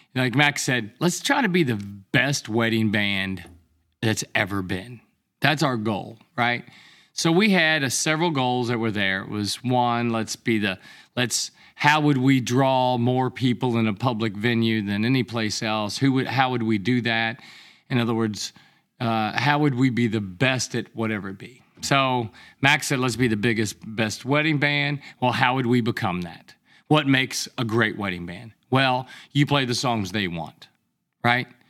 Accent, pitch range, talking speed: American, 110-135 Hz, 185 wpm